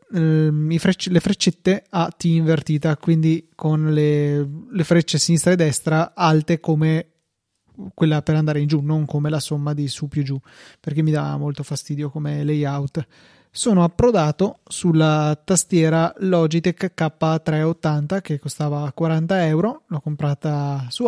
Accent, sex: native, male